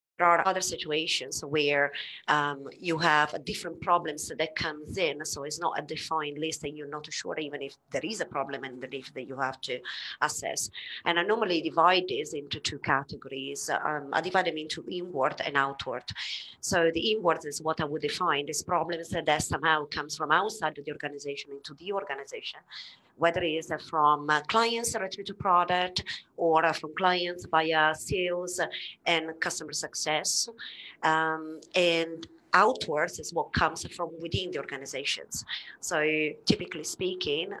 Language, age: English, 30-49